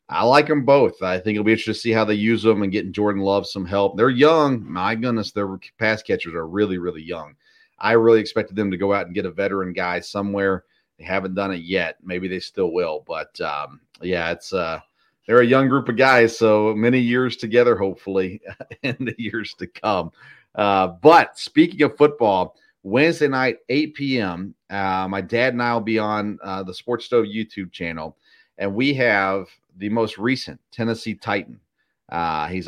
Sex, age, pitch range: male, 40-59, 100-120 Hz